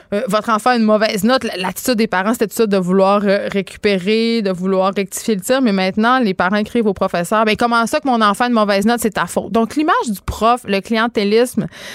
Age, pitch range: 20-39, 180-225 Hz